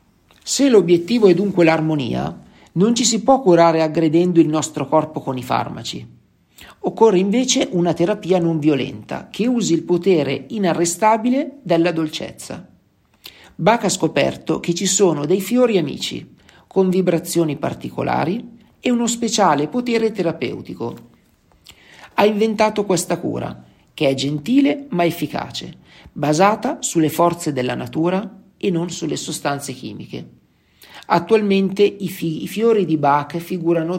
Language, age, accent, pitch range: Italian, 50-69, native, 150-195 Hz